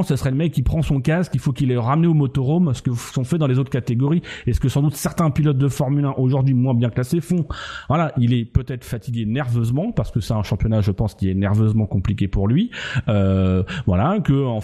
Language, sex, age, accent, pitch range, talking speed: French, male, 30-49, French, 120-160 Hz, 245 wpm